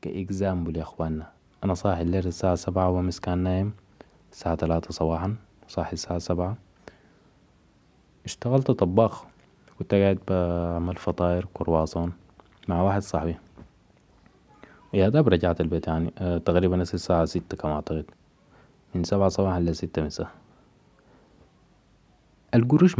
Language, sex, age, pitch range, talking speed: Arabic, male, 20-39, 85-100 Hz, 115 wpm